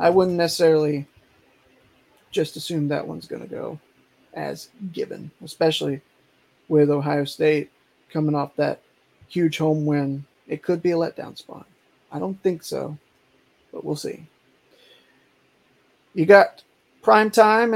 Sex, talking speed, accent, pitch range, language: male, 130 wpm, American, 150-185 Hz, English